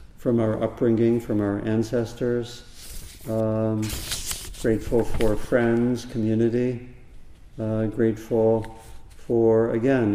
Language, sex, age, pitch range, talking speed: English, male, 50-69, 105-115 Hz, 90 wpm